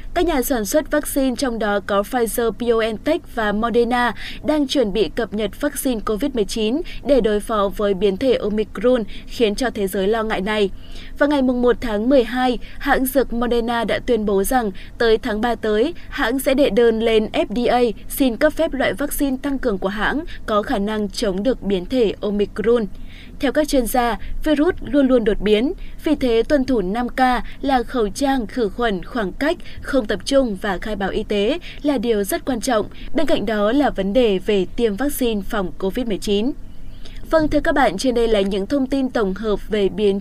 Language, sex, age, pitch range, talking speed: Vietnamese, female, 20-39, 210-265 Hz, 195 wpm